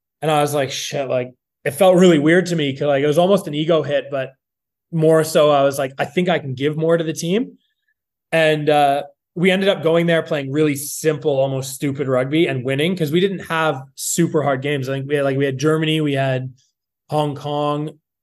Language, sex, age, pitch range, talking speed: English, male, 20-39, 135-165 Hz, 225 wpm